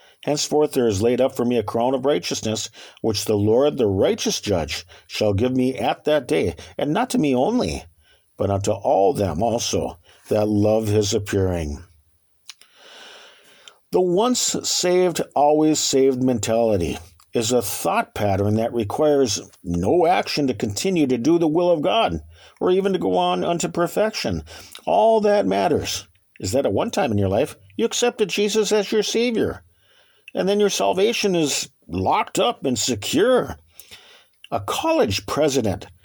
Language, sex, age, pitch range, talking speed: English, male, 50-69, 100-155 Hz, 160 wpm